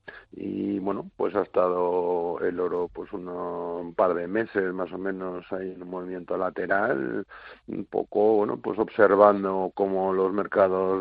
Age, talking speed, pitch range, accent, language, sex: 50-69, 155 wpm, 85-95 Hz, Spanish, Spanish, male